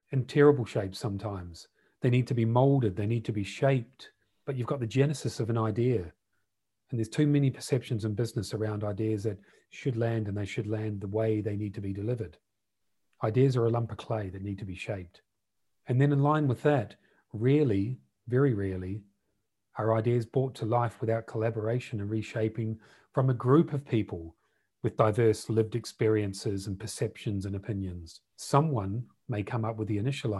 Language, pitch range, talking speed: English, 105-130 Hz, 185 wpm